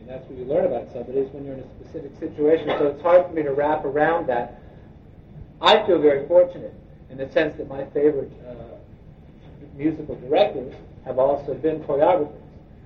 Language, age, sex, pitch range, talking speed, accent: English, 50-69, male, 135-165 Hz, 185 wpm, American